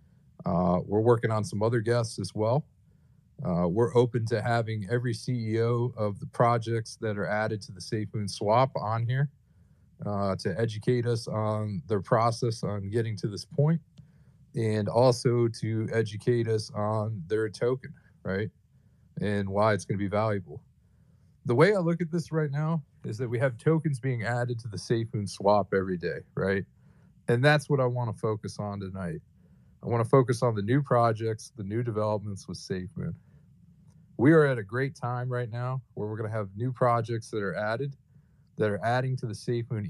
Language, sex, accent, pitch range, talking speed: English, male, American, 105-130 Hz, 185 wpm